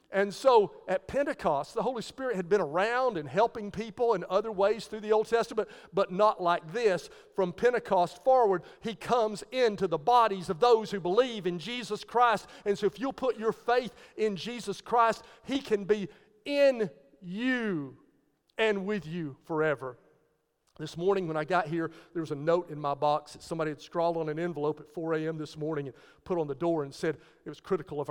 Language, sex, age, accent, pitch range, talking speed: English, male, 50-69, American, 170-230 Hz, 200 wpm